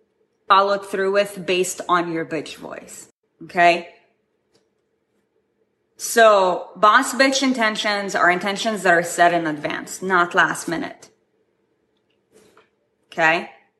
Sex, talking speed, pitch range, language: female, 105 wpm, 185-260 Hz, English